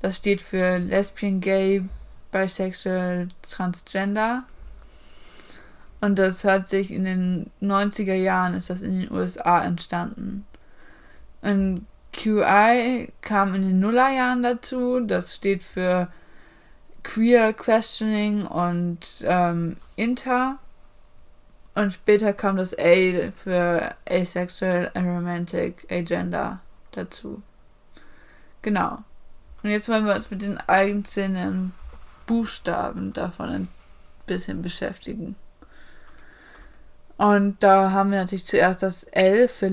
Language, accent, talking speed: German, German, 105 wpm